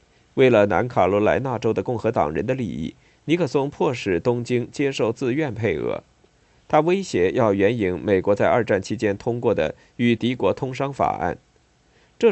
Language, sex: Chinese, male